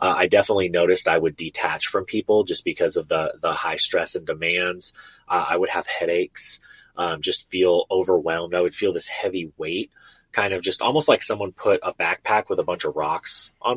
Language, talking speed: English, 210 wpm